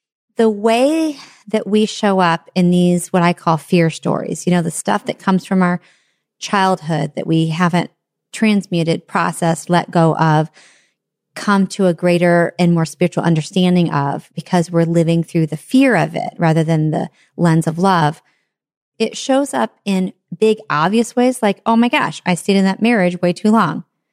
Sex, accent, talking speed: female, American, 180 wpm